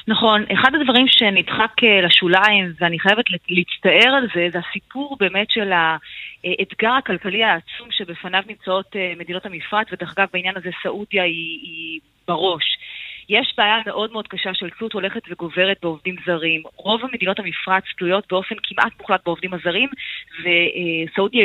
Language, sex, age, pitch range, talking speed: Hebrew, female, 30-49, 180-225 Hz, 140 wpm